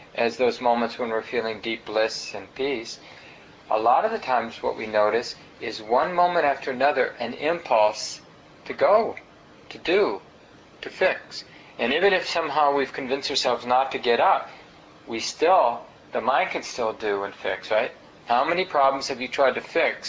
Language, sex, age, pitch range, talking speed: English, male, 40-59, 115-135 Hz, 180 wpm